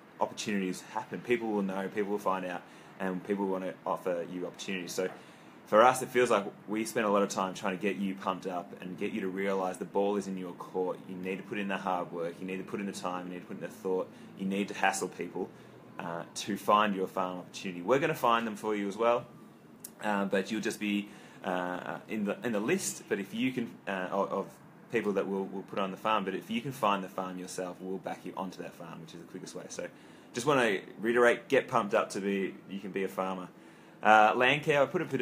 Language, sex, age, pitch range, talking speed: English, male, 20-39, 95-105 Hz, 255 wpm